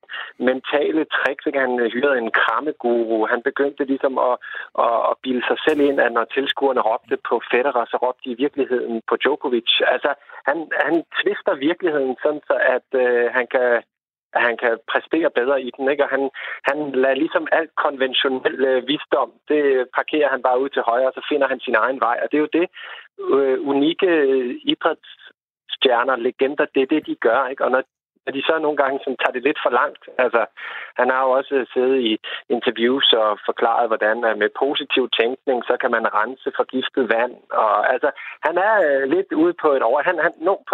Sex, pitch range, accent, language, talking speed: male, 130-165 Hz, native, Danish, 190 wpm